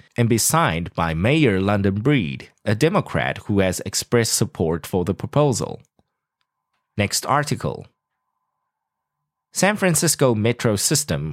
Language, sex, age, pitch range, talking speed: English, male, 20-39, 100-150 Hz, 115 wpm